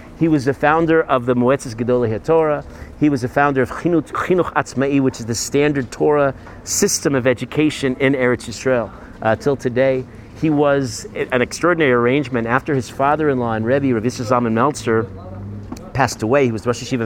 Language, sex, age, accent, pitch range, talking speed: English, male, 40-59, American, 115-140 Hz, 170 wpm